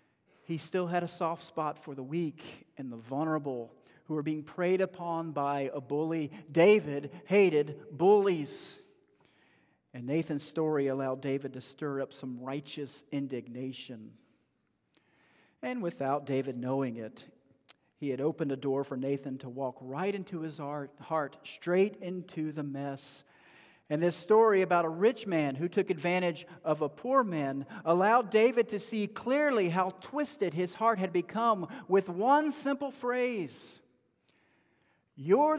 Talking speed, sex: 145 wpm, male